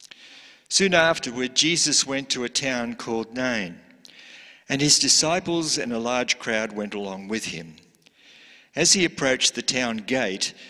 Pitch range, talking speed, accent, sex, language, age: 115-150 Hz, 145 wpm, Australian, male, English, 50-69